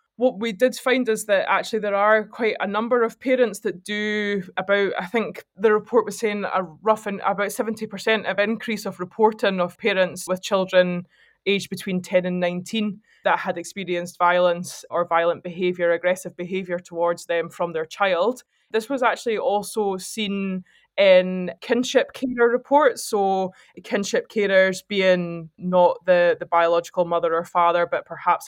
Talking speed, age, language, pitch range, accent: 160 wpm, 20-39, English, 175-220 Hz, British